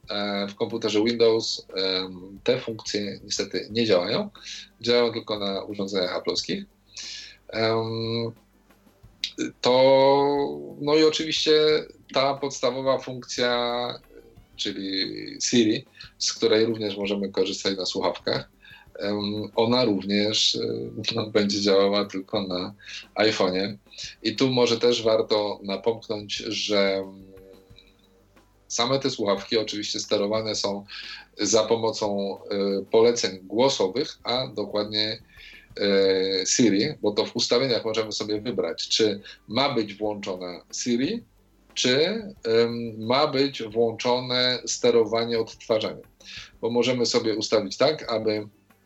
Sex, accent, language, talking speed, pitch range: male, native, Polish, 100 wpm, 100-120 Hz